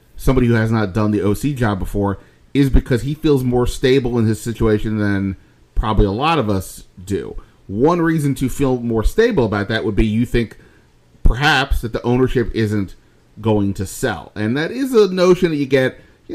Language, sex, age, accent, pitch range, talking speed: English, male, 30-49, American, 105-120 Hz, 200 wpm